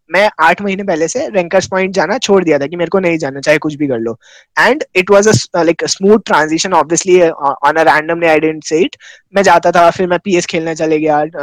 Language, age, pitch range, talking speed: Hindi, 20-39, 150-185 Hz, 140 wpm